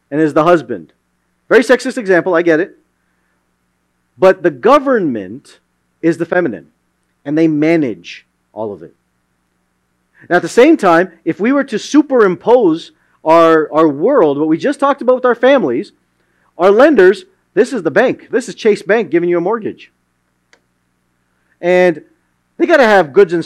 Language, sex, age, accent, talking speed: English, male, 40-59, American, 160 wpm